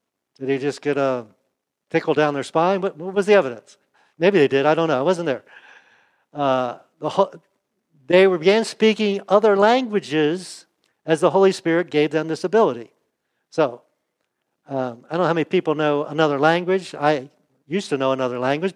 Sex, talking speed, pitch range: male, 170 wpm, 145-185 Hz